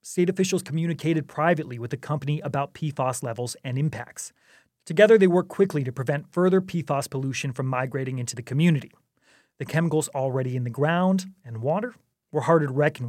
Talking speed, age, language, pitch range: 175 wpm, 30-49, English, 135-170 Hz